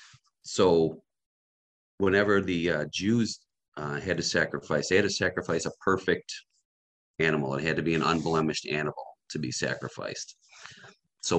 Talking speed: 140 wpm